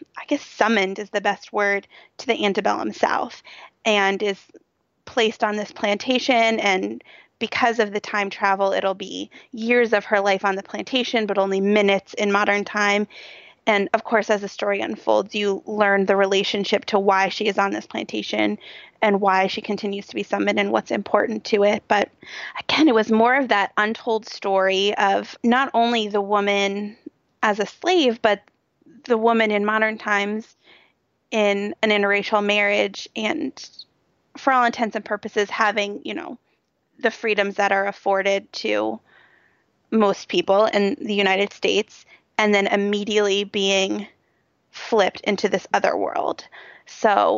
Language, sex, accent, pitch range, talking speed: English, female, American, 200-220 Hz, 160 wpm